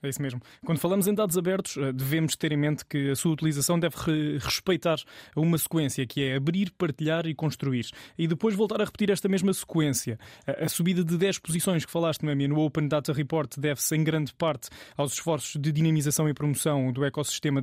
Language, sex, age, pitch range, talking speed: Portuguese, male, 20-39, 145-165 Hz, 195 wpm